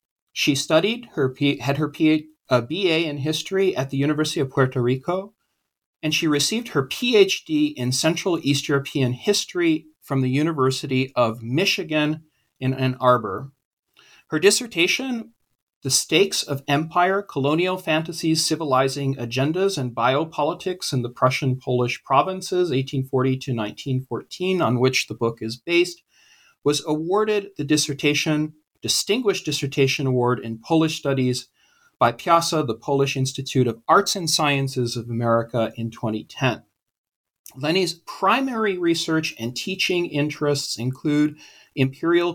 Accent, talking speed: American, 125 wpm